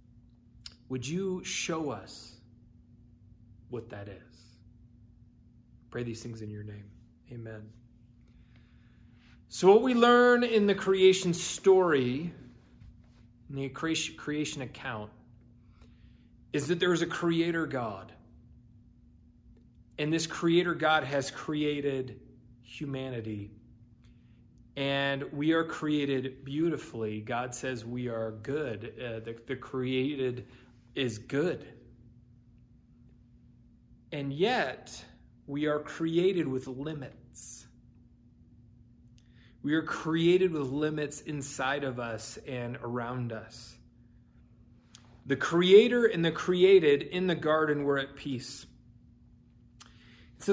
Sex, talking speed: male, 105 wpm